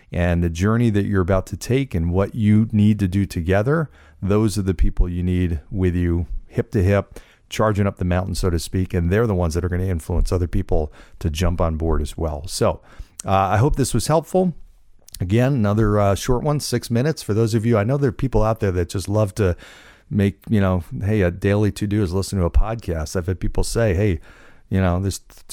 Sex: male